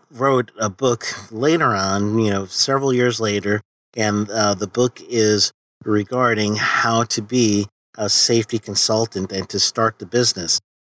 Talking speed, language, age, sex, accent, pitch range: 150 wpm, English, 40-59, male, American, 100-120 Hz